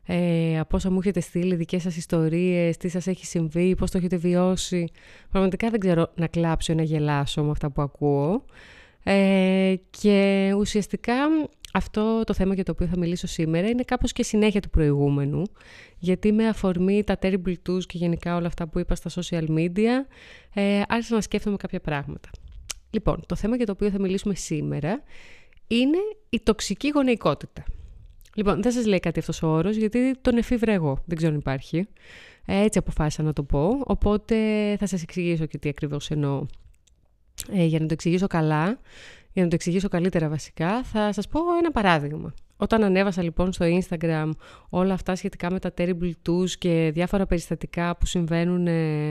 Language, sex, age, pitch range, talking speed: Greek, female, 30-49, 165-205 Hz, 175 wpm